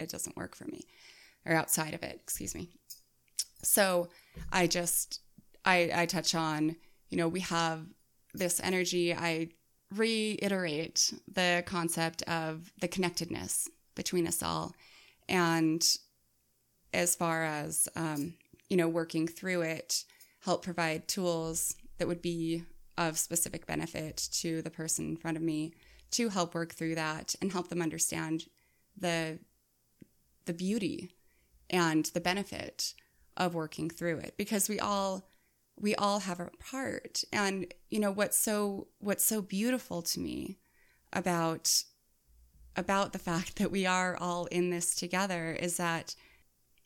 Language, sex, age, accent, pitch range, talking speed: English, female, 20-39, American, 165-190 Hz, 140 wpm